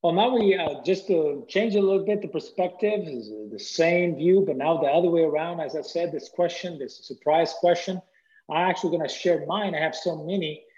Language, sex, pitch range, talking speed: English, male, 145-185 Hz, 215 wpm